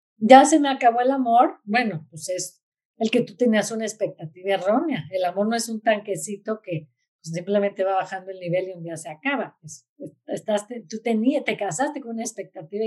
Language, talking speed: Spanish, 200 wpm